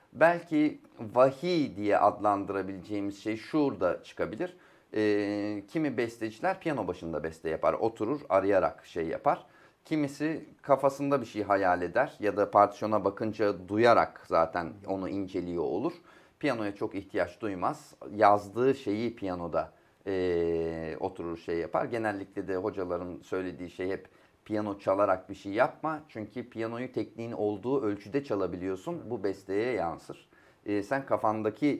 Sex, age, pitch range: male, 30-49, 95-145 Hz